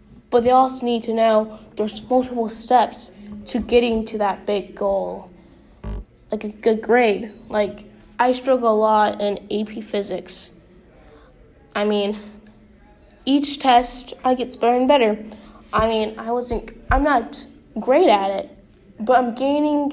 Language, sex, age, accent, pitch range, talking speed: English, female, 10-29, American, 210-245 Hz, 145 wpm